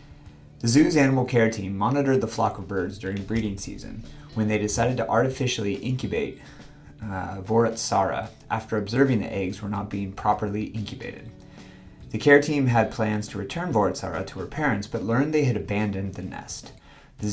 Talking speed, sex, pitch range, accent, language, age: 170 wpm, male, 100-120 Hz, American, English, 30-49